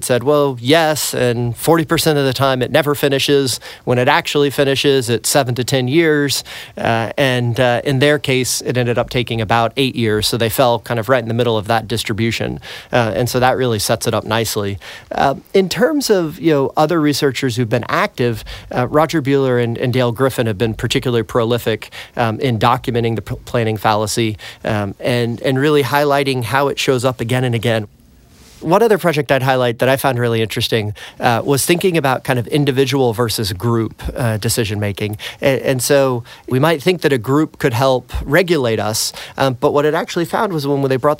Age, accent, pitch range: 40-59, American, 115-140 Hz